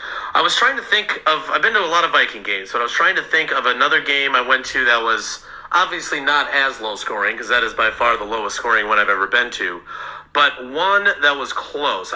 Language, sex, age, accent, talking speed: English, male, 40-59, American, 250 wpm